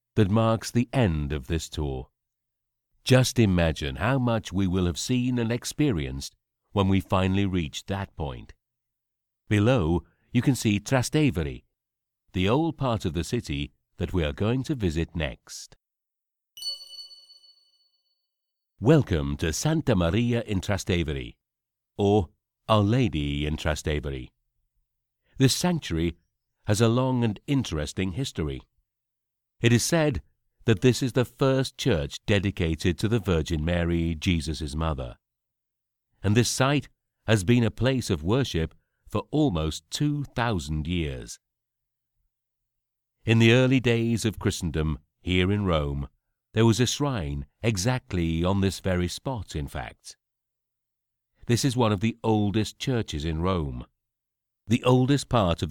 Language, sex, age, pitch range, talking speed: English, male, 60-79, 85-125 Hz, 130 wpm